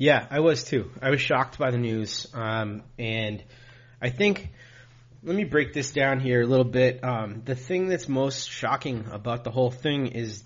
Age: 30-49